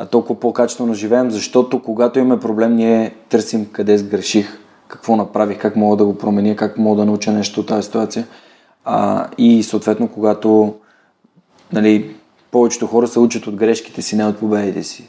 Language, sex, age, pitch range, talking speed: Bulgarian, male, 20-39, 110-140 Hz, 165 wpm